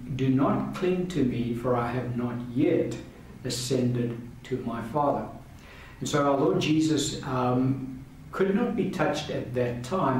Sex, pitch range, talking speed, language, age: male, 120-140 Hz, 160 wpm, English, 60-79